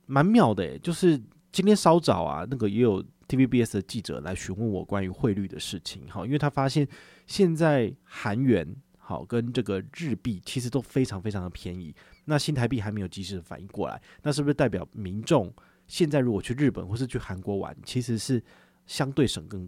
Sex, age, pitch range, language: male, 20-39, 100-140 Hz, Chinese